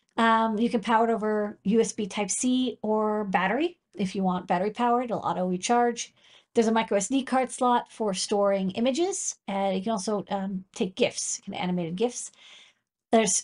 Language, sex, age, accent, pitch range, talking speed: English, female, 40-59, American, 200-240 Hz, 165 wpm